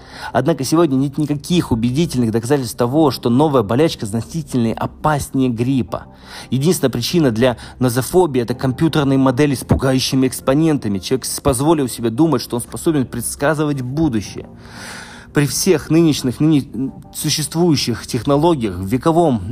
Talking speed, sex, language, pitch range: 125 wpm, male, Russian, 120-150 Hz